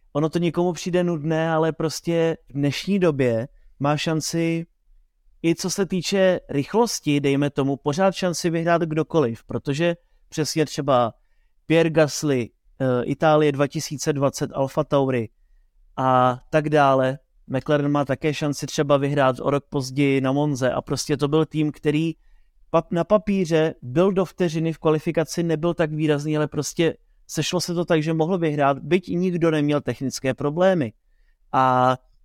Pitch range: 145-170 Hz